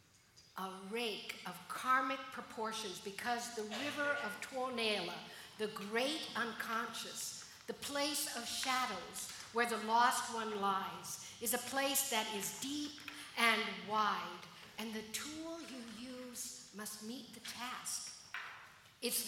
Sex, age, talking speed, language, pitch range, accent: female, 60-79, 125 wpm, English, 220-290 Hz, American